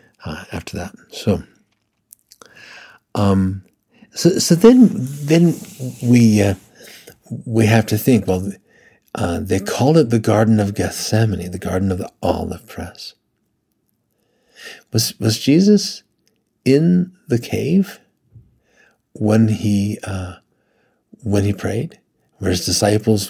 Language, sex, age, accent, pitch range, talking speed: English, male, 60-79, American, 100-130 Hz, 115 wpm